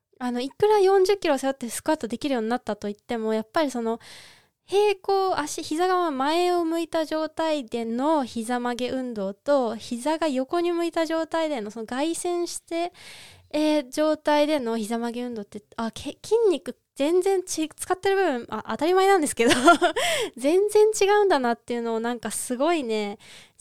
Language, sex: Japanese, female